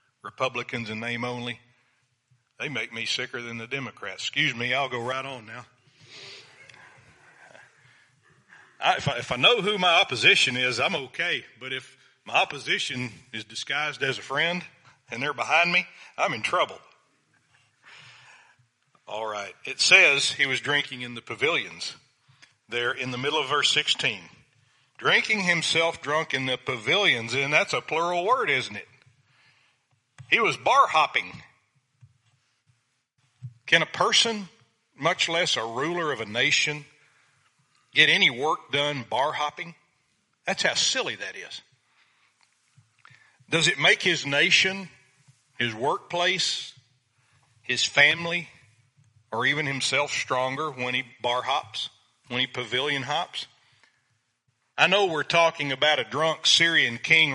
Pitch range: 120-150 Hz